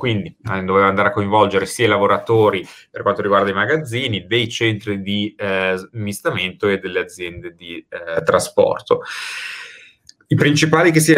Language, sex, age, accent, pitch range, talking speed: Italian, male, 30-49, native, 95-155 Hz, 150 wpm